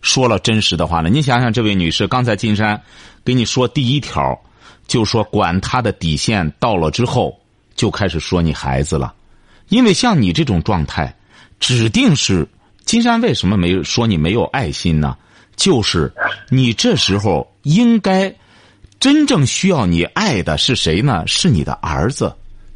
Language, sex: Chinese, male